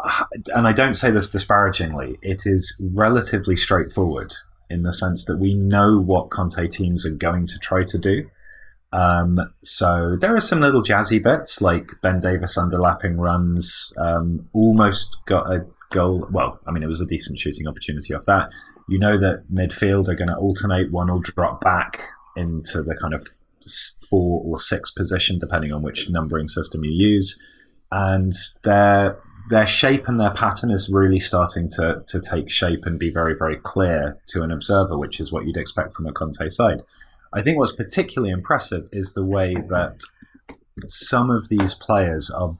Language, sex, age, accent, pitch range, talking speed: English, male, 30-49, British, 85-100 Hz, 175 wpm